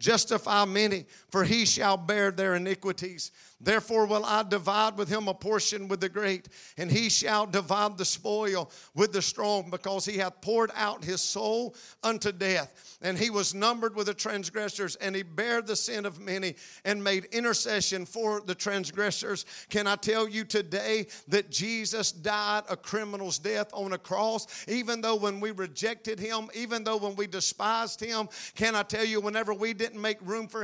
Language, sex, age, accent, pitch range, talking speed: English, male, 50-69, American, 200-225 Hz, 180 wpm